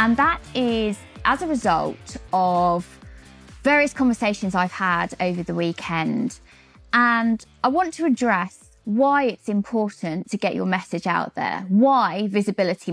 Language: English